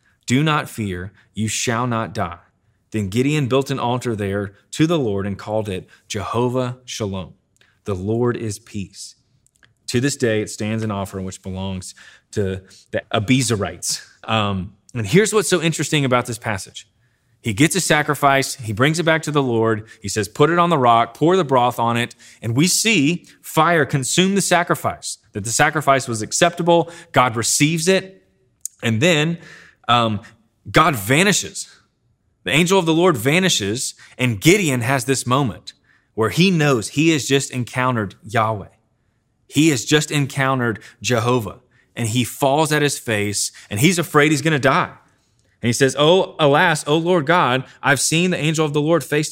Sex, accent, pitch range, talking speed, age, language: male, American, 110-150 Hz, 170 wpm, 20-39, English